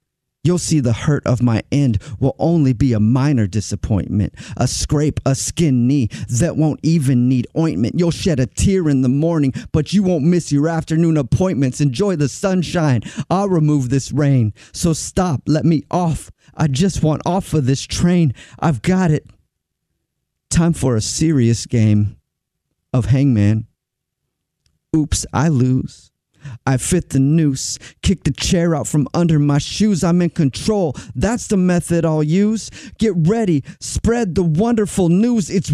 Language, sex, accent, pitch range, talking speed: English, male, American, 130-180 Hz, 160 wpm